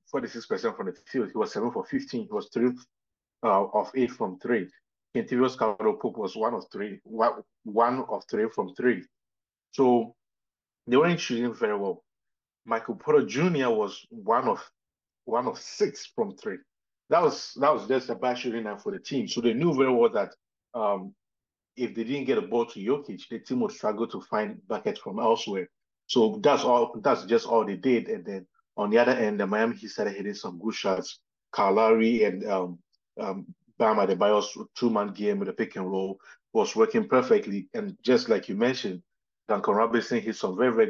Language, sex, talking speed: English, male, 190 wpm